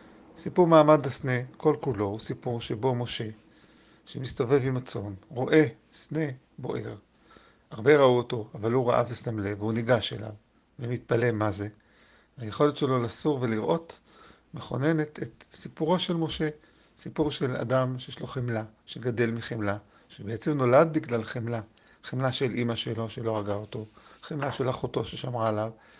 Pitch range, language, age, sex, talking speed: 115-140 Hz, Hebrew, 50-69, male, 145 wpm